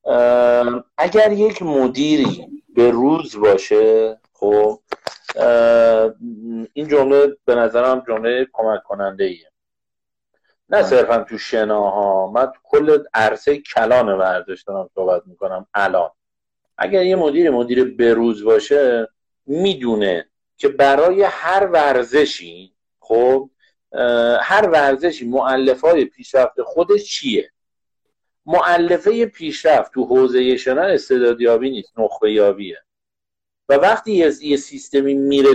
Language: Persian